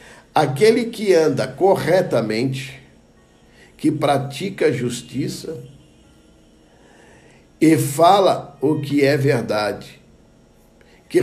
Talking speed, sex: 80 wpm, male